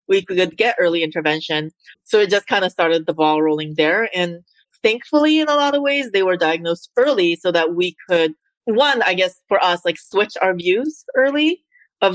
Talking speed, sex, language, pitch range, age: 200 wpm, female, English, 170-265 Hz, 30-49